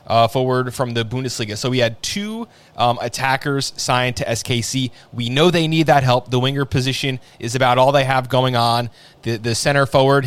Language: English